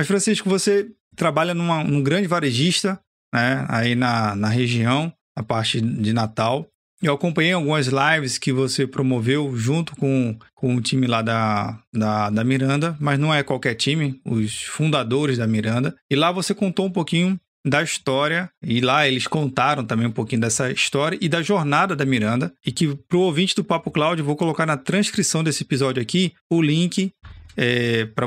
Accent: Brazilian